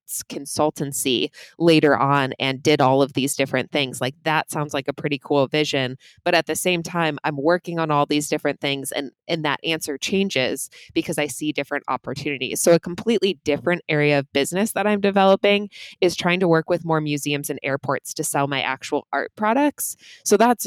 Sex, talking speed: female, 195 wpm